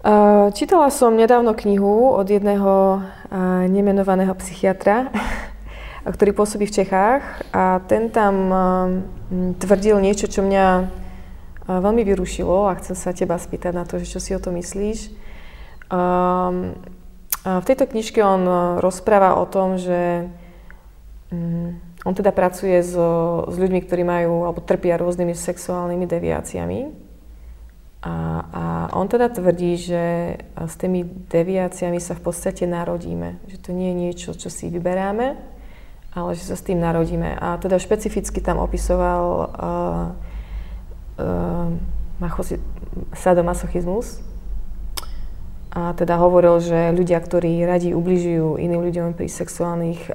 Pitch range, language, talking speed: 170-195 Hz, Slovak, 120 wpm